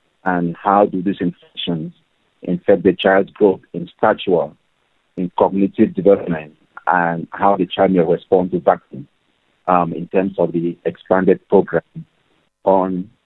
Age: 50-69